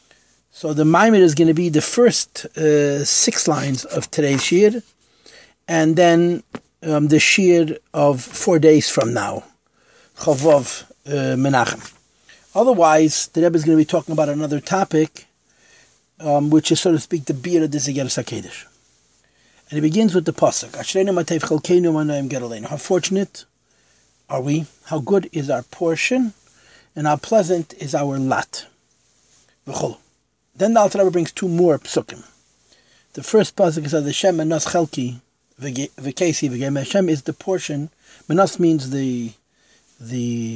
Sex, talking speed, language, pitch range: male, 140 wpm, English, 135-175 Hz